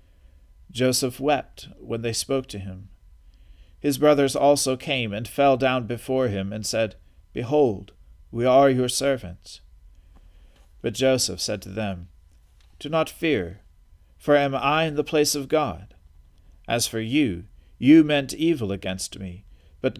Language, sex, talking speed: English, male, 145 wpm